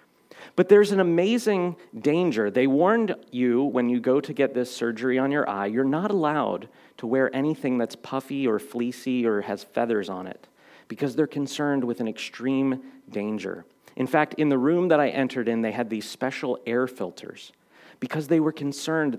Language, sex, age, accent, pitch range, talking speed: English, male, 40-59, American, 110-145 Hz, 185 wpm